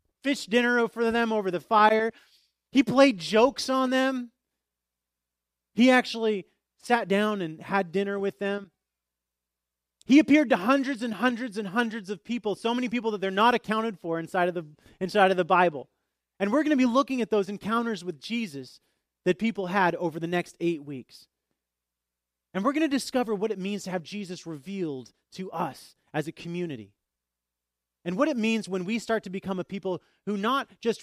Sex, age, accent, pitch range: male, 30-49, American, 155-220 Hz